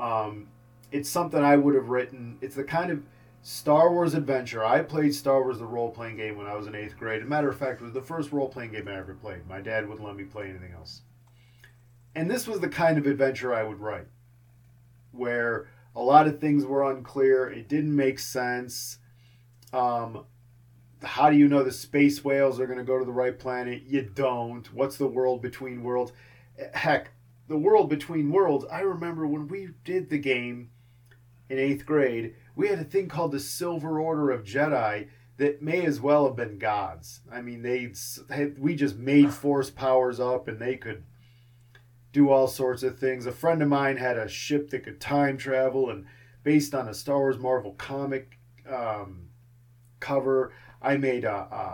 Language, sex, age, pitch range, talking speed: English, male, 30-49, 120-140 Hz, 195 wpm